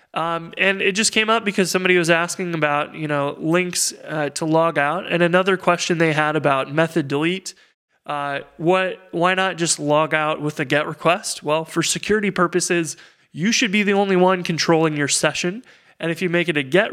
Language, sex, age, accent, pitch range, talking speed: English, male, 20-39, American, 140-175 Hz, 200 wpm